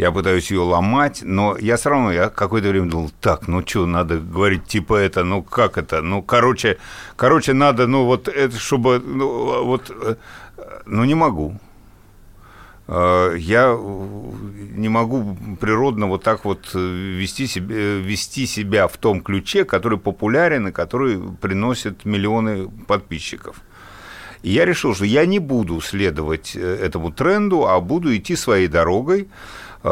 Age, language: 60-79, Russian